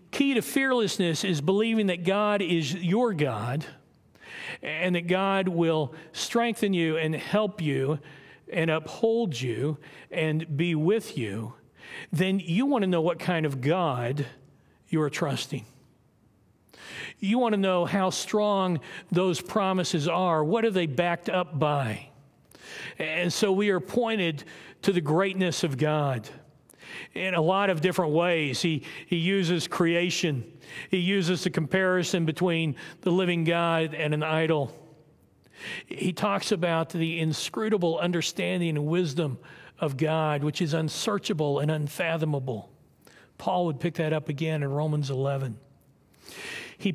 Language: English